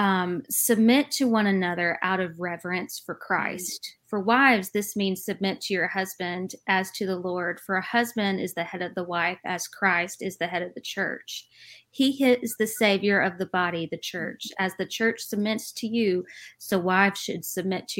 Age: 30-49